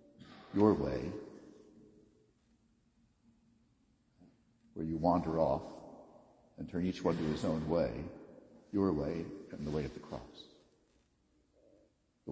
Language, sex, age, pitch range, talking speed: English, male, 60-79, 85-110 Hz, 110 wpm